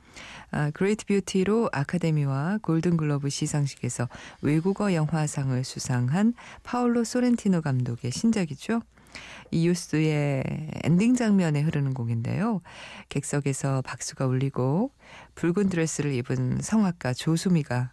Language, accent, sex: Korean, native, female